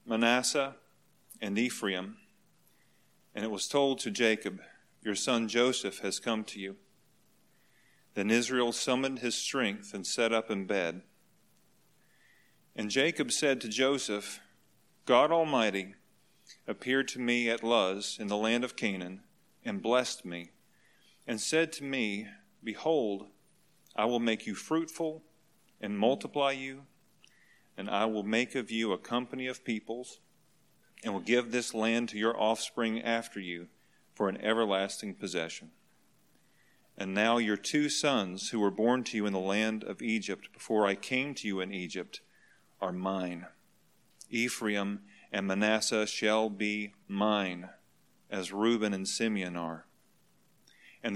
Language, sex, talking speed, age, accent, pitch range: English, male, 140 wpm, 40-59, American, 100-125 Hz